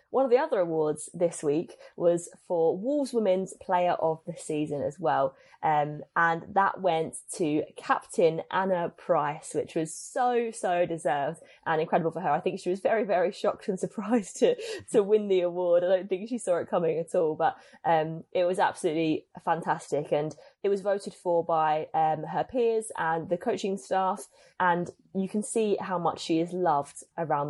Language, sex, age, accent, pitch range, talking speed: English, female, 20-39, British, 160-200 Hz, 190 wpm